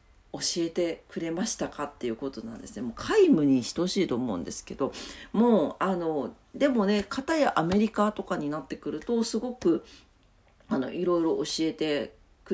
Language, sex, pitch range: Japanese, female, 170-280 Hz